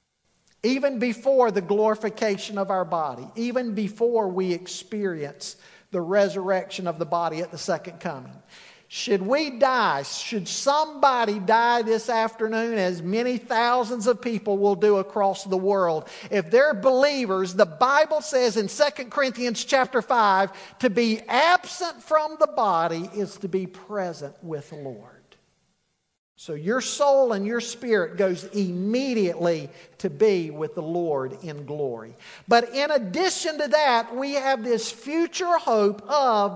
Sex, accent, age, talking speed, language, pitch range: male, American, 50-69, 145 wpm, English, 200-260 Hz